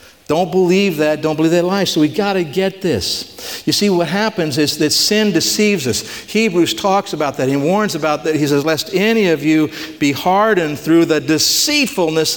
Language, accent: English, American